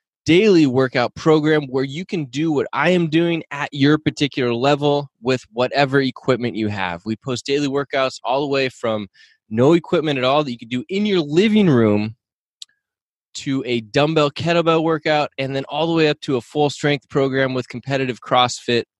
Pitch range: 115-150 Hz